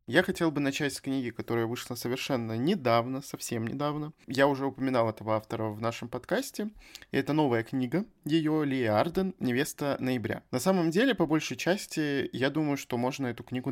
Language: Russian